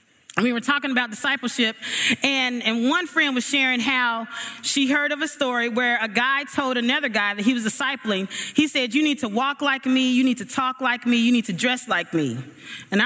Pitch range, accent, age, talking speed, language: 240-290 Hz, American, 30-49, 220 wpm, English